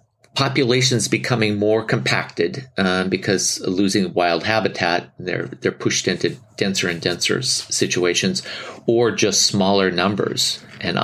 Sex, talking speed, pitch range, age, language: male, 120 wpm, 85-105 Hz, 40-59, English